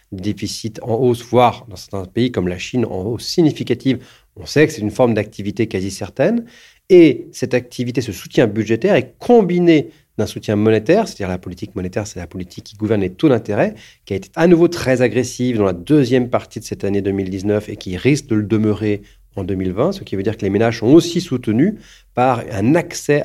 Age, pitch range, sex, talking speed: 40-59, 100-130 Hz, male, 210 wpm